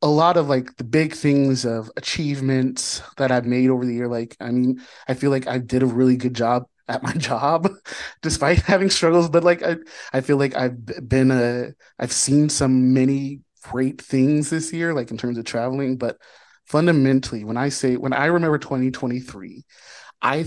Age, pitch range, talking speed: 30-49, 120-145 Hz, 190 wpm